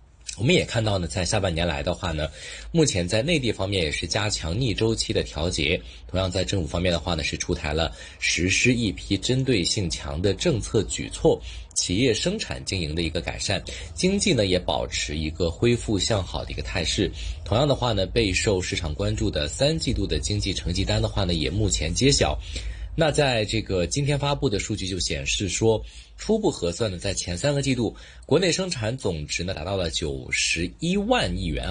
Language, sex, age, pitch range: Chinese, male, 20-39, 85-115 Hz